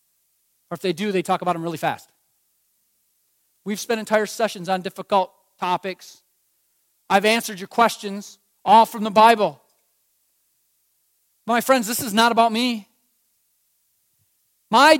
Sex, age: male, 40-59